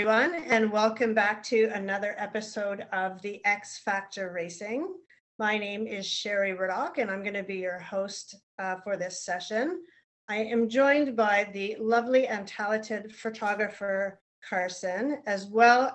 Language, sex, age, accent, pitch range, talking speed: English, female, 40-59, American, 195-240 Hz, 150 wpm